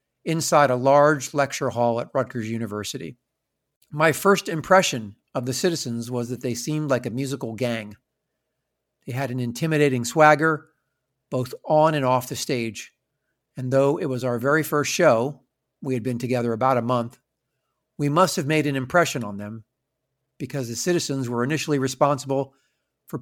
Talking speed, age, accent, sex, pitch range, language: 165 wpm, 50-69, American, male, 120-145 Hz, English